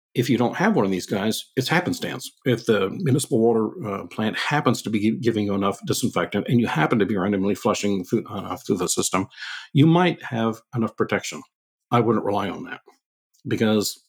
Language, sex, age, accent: English, male, 50-69, American